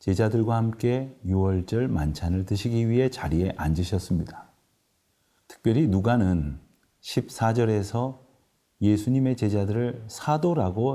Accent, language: native, Korean